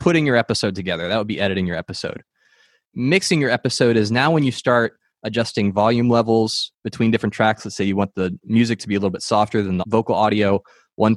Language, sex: English, male